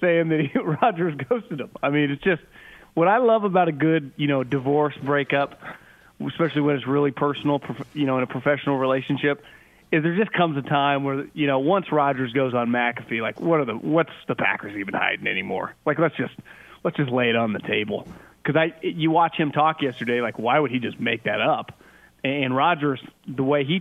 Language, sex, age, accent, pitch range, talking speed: English, male, 30-49, American, 135-160 Hz, 220 wpm